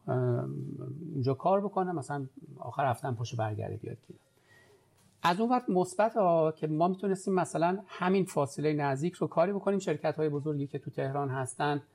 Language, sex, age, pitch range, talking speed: Persian, male, 50-69, 120-165 Hz, 155 wpm